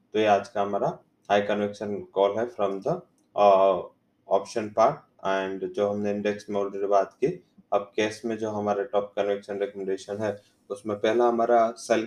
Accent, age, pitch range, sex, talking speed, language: Indian, 20-39, 105-115 Hz, male, 170 wpm, English